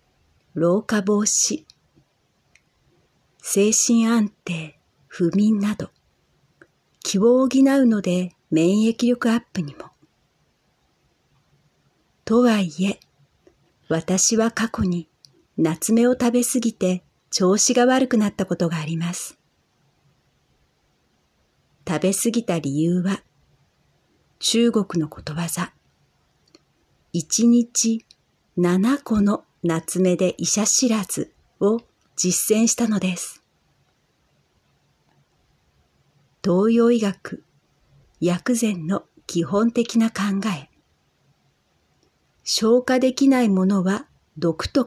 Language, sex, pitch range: Japanese, female, 165-230 Hz